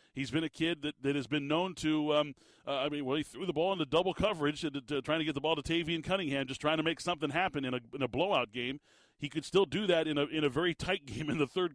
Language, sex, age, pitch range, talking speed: English, male, 40-59, 140-170 Hz, 300 wpm